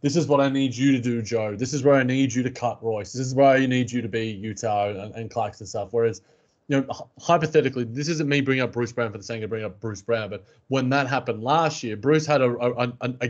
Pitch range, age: 115-130 Hz, 20-39